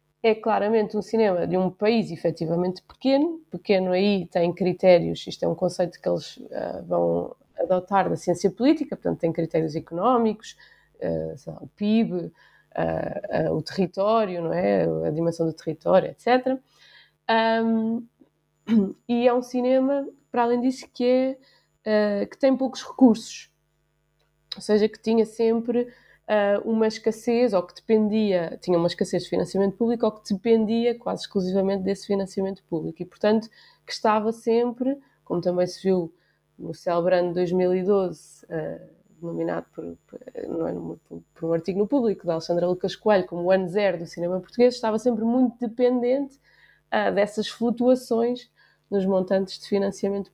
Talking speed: 150 wpm